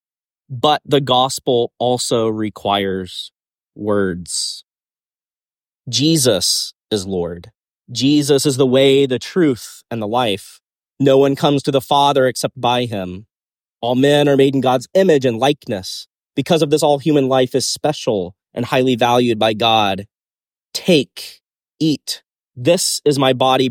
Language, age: English, 30-49